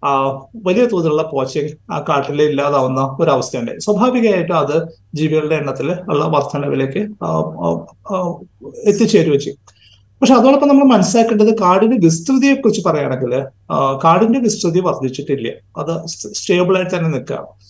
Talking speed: 105 wpm